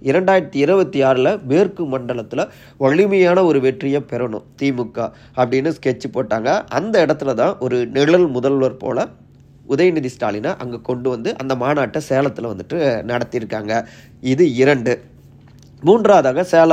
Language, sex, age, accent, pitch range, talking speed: Tamil, male, 30-49, native, 120-150 Hz, 120 wpm